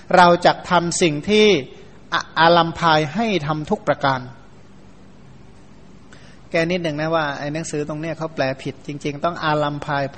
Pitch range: 155-195 Hz